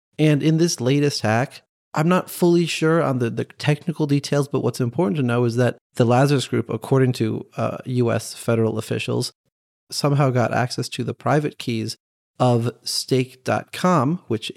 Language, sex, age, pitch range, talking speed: English, male, 30-49, 115-155 Hz, 165 wpm